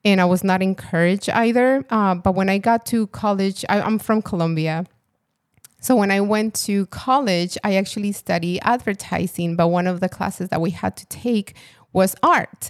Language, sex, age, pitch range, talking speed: English, female, 20-39, 175-205 Hz, 180 wpm